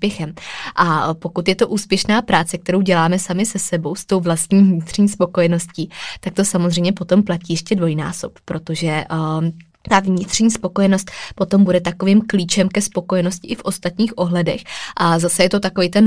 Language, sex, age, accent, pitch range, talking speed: Czech, female, 20-39, native, 165-195 Hz, 160 wpm